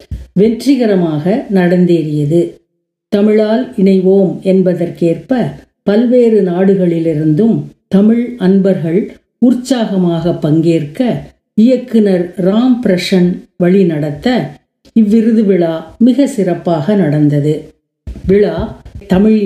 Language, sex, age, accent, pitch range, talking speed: Tamil, female, 50-69, native, 175-220 Hz, 70 wpm